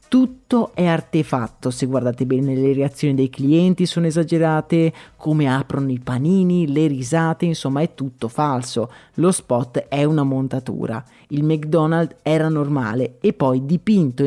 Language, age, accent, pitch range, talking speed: Italian, 30-49, native, 135-175 Hz, 145 wpm